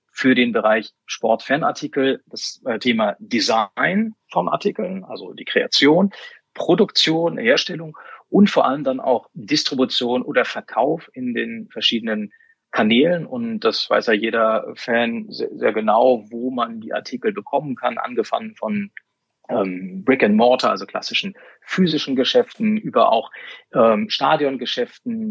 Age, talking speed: 30-49, 130 wpm